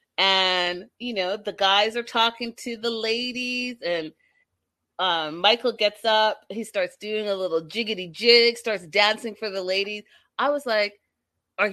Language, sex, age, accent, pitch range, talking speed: English, female, 30-49, American, 175-245 Hz, 160 wpm